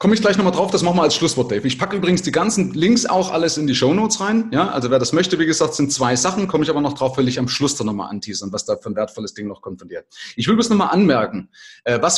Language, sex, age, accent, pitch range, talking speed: German, male, 30-49, German, 140-210 Hz, 305 wpm